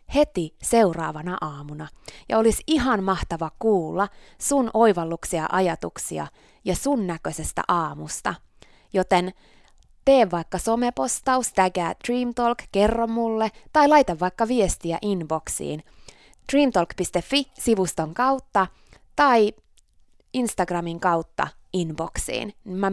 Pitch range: 155-220 Hz